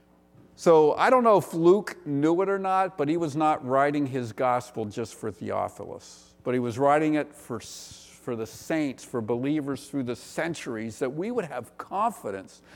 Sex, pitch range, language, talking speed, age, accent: male, 110-170 Hz, English, 185 wpm, 50-69, American